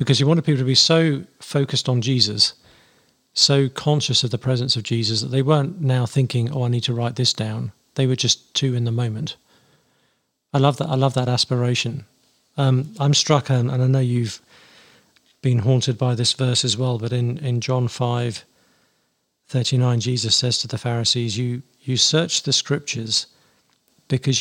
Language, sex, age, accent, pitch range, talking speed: English, male, 50-69, British, 120-140 Hz, 180 wpm